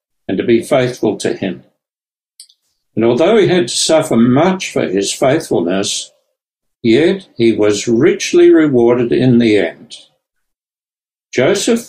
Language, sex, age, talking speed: English, male, 60-79, 125 wpm